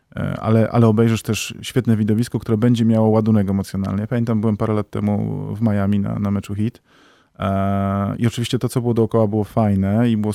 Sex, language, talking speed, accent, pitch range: male, Polish, 185 wpm, native, 105-120 Hz